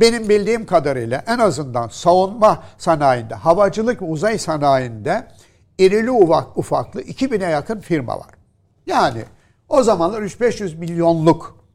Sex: male